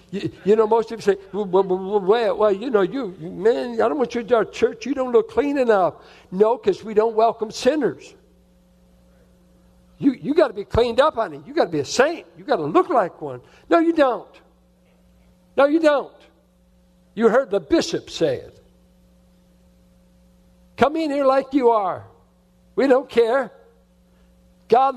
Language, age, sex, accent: English, 60-79, male, American